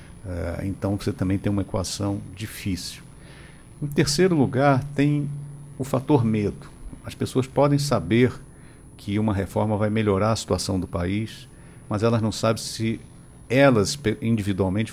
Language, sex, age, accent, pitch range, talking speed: Portuguese, male, 50-69, Brazilian, 95-120 Hz, 135 wpm